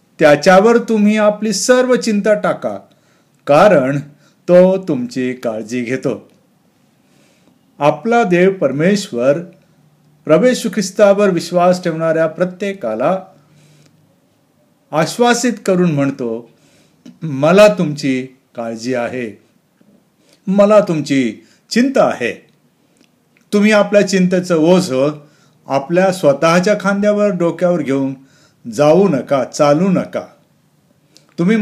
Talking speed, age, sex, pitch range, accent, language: 80 wpm, 50-69, male, 140-205 Hz, native, Marathi